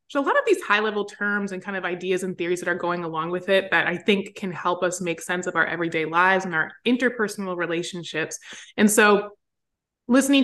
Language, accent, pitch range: English, American, 185-230 Hz